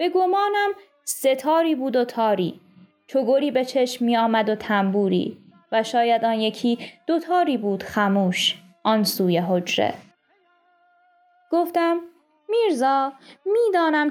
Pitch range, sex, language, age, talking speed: 220-305 Hz, female, Persian, 20-39, 105 wpm